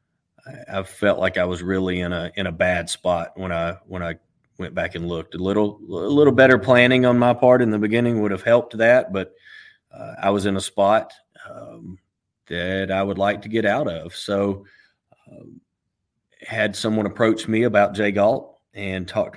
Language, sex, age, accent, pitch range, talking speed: English, male, 30-49, American, 90-105 Hz, 195 wpm